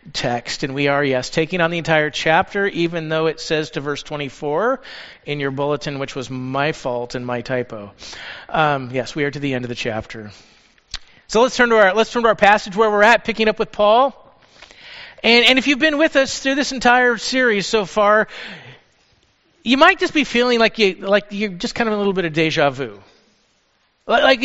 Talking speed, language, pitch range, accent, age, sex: 210 wpm, English, 170-275 Hz, American, 40-59, male